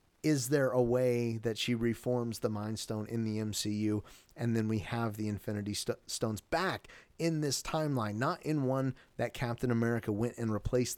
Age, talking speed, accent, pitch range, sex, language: 30-49, 180 wpm, American, 110-130 Hz, male, English